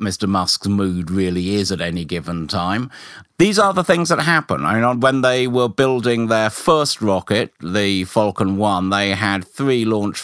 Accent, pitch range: British, 90-110 Hz